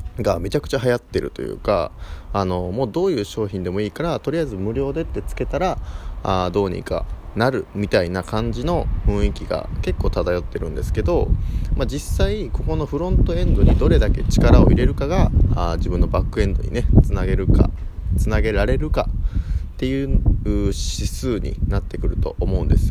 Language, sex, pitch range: Japanese, male, 85-105 Hz